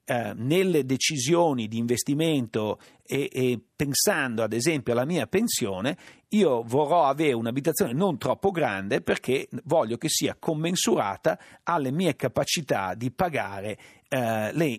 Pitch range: 125-170 Hz